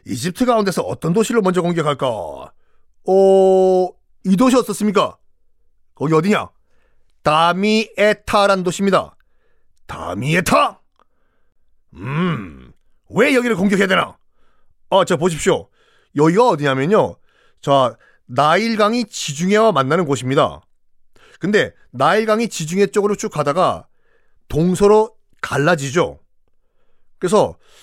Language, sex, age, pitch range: Korean, male, 40-59, 150-220 Hz